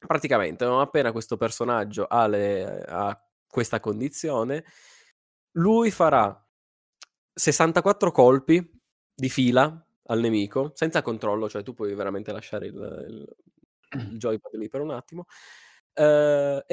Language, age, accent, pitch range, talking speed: Italian, 20-39, native, 105-140 Hz, 110 wpm